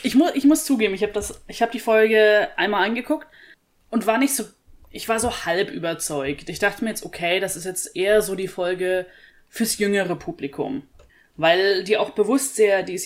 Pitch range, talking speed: 175-220 Hz, 205 wpm